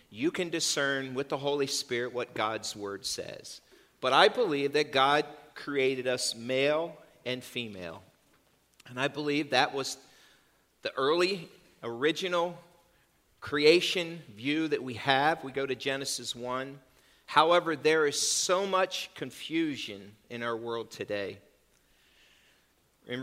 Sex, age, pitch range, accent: male, 40-59, 125-170 Hz, American